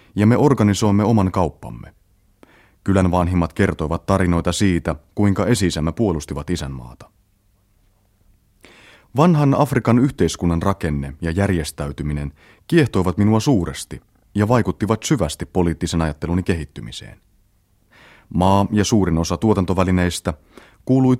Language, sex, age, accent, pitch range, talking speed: Finnish, male, 30-49, native, 85-105 Hz, 100 wpm